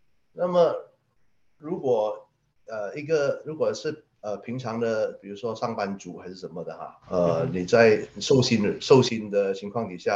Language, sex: Chinese, male